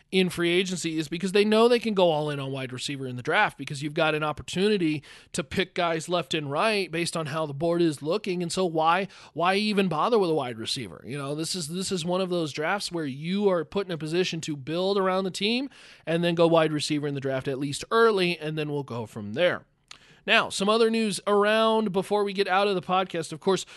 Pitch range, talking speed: 160-210 Hz, 250 wpm